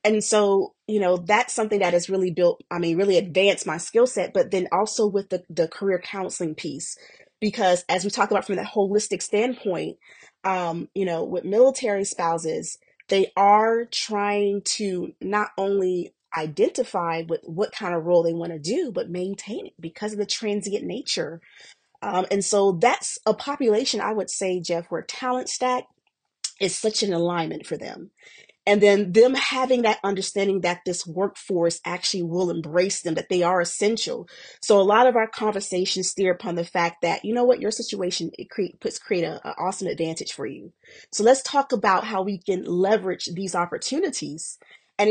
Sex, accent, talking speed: female, American, 180 wpm